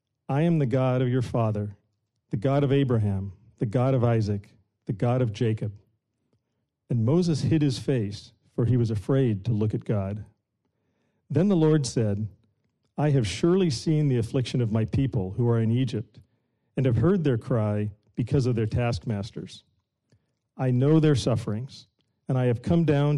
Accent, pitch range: American, 110-140 Hz